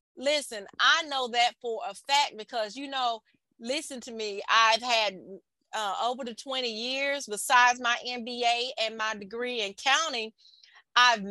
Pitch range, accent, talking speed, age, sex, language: 230-280 Hz, American, 155 wpm, 30-49, female, English